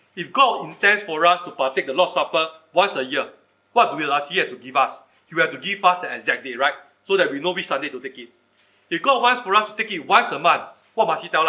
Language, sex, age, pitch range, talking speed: English, male, 40-59, 165-225 Hz, 275 wpm